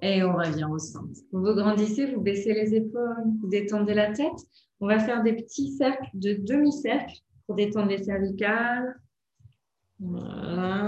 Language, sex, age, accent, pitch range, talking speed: French, female, 20-39, French, 205-245 Hz, 160 wpm